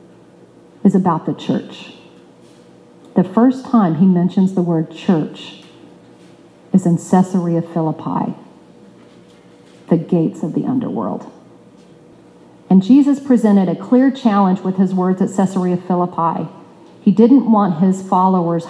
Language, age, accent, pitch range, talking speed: English, 40-59, American, 165-195 Hz, 120 wpm